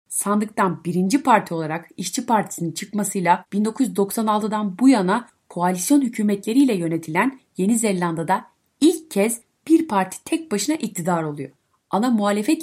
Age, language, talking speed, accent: 30-49, Turkish, 120 wpm, native